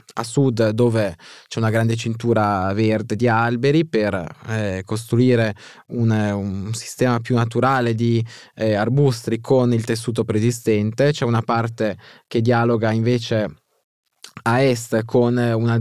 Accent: native